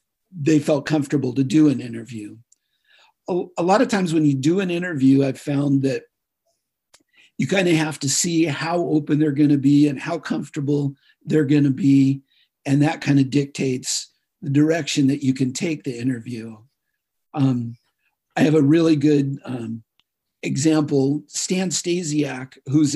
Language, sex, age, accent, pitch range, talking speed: English, male, 50-69, American, 135-165 Hz, 160 wpm